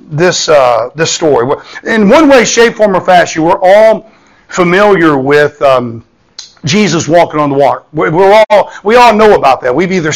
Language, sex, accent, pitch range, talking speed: English, male, American, 150-215 Hz, 175 wpm